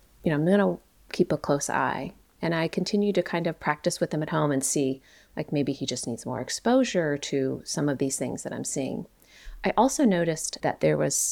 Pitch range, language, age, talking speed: 135-175 Hz, English, 30-49, 230 wpm